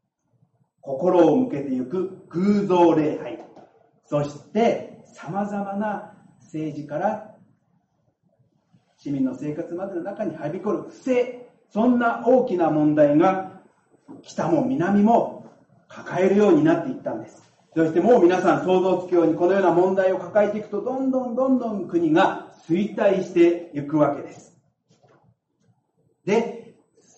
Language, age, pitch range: Japanese, 40-59, 165-225 Hz